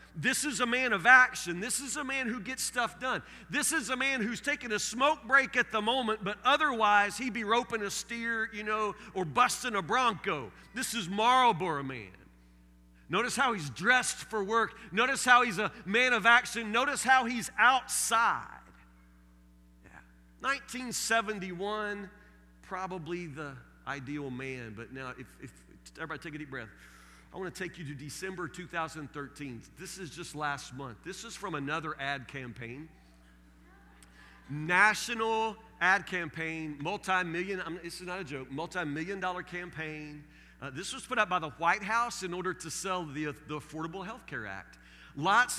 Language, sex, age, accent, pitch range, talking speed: English, male, 40-59, American, 145-230 Hz, 165 wpm